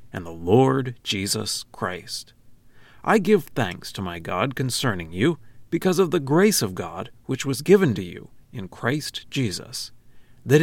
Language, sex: English, male